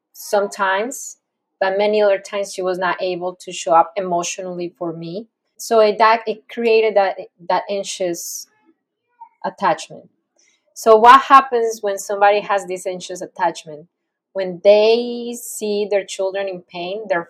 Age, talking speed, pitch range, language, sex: 20-39, 140 wpm, 185-220 Hz, English, female